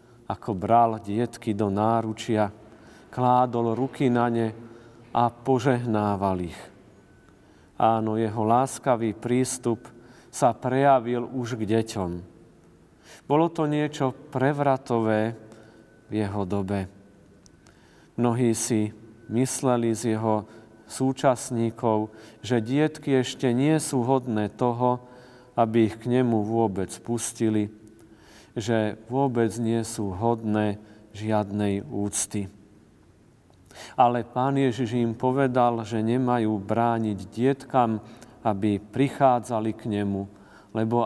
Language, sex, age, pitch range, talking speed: Slovak, male, 40-59, 105-125 Hz, 100 wpm